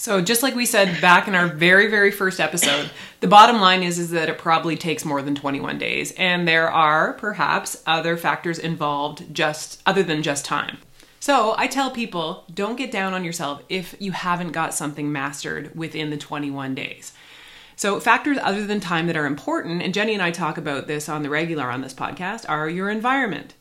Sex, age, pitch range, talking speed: female, 20-39, 150-200 Hz, 205 wpm